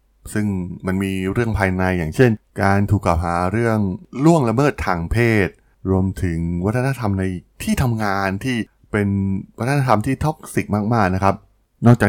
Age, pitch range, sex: 20-39, 90-110 Hz, male